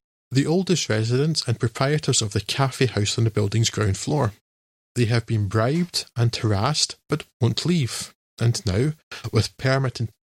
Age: 20-39